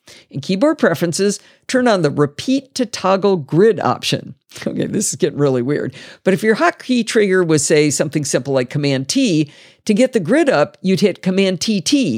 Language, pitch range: English, 160-245 Hz